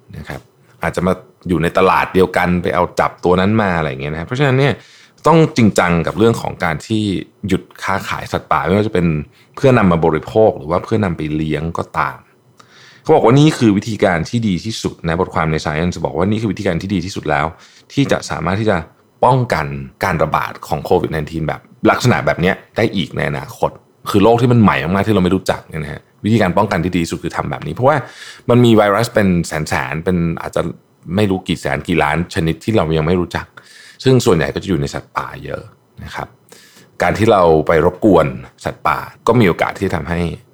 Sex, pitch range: male, 80-110 Hz